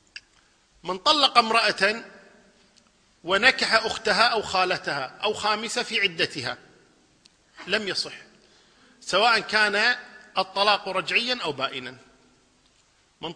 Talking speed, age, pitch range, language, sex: 90 wpm, 40-59, 180-235 Hz, Arabic, male